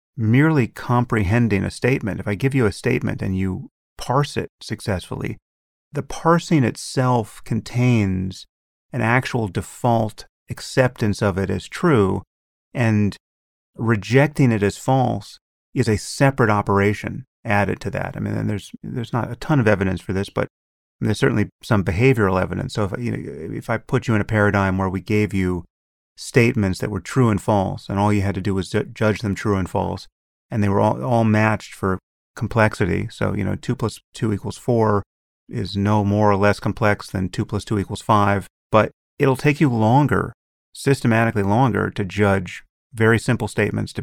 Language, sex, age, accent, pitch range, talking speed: English, male, 30-49, American, 95-120 Hz, 175 wpm